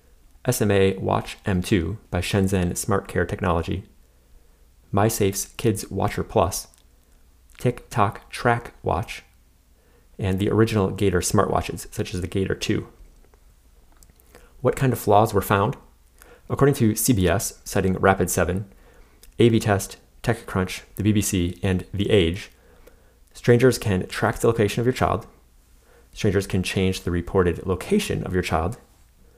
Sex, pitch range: male, 90-110 Hz